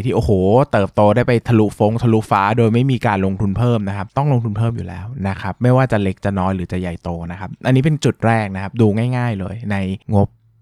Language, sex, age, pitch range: Thai, male, 20-39, 100-130 Hz